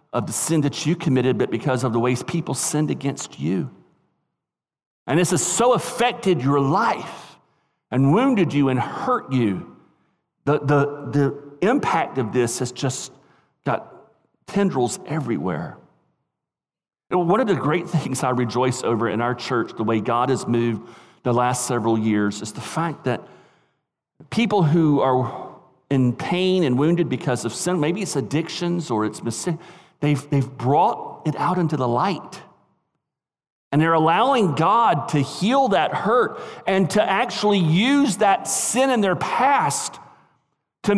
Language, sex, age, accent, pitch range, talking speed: English, male, 40-59, American, 135-210 Hz, 155 wpm